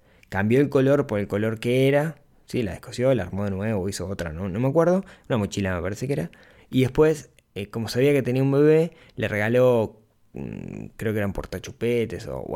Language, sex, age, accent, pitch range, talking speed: Spanish, male, 20-39, Argentinian, 105-140 Hz, 215 wpm